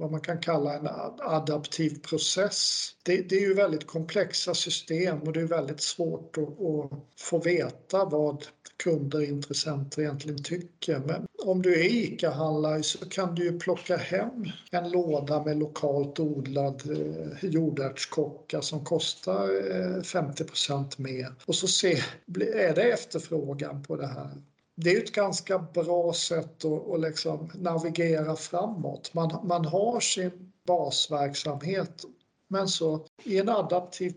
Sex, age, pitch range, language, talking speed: male, 50-69, 150-180 Hz, Swedish, 140 wpm